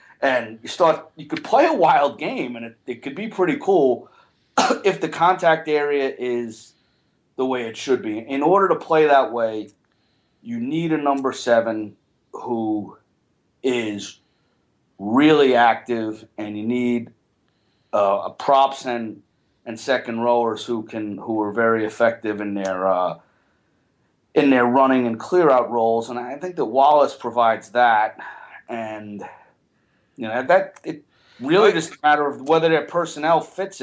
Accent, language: American, English